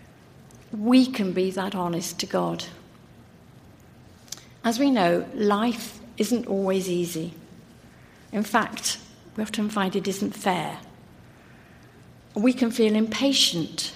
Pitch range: 180-225 Hz